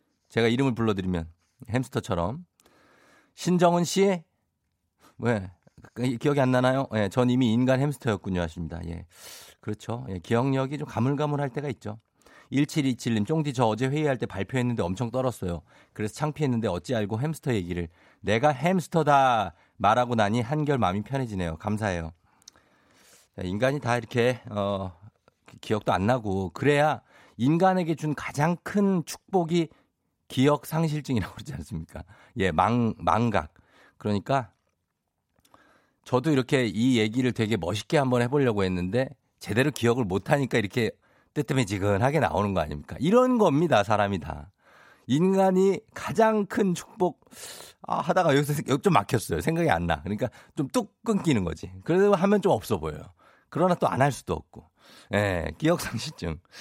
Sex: male